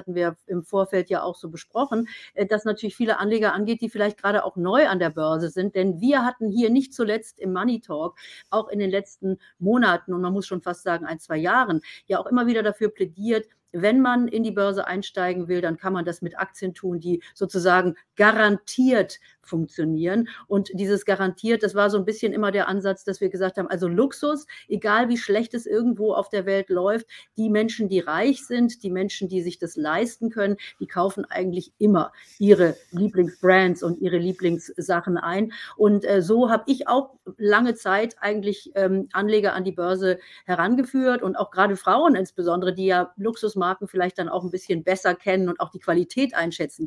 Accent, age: German, 40-59